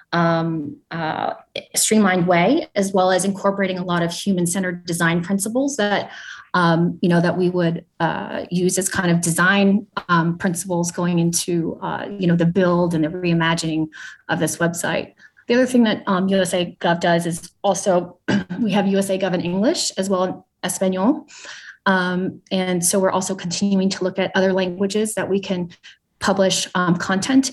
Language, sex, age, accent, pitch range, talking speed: English, female, 30-49, American, 175-205 Hz, 170 wpm